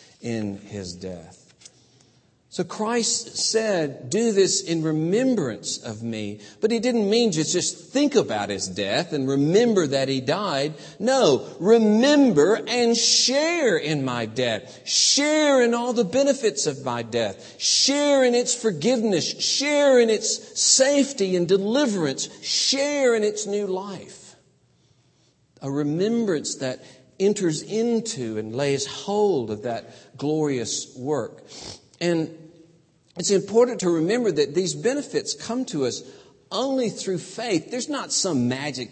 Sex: male